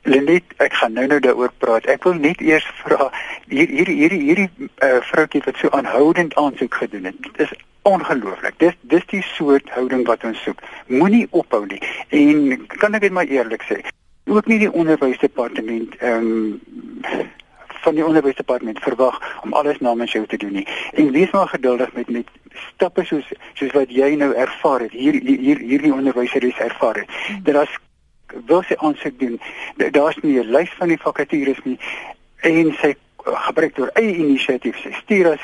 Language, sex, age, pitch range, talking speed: Malay, male, 60-79, 125-190 Hz, 185 wpm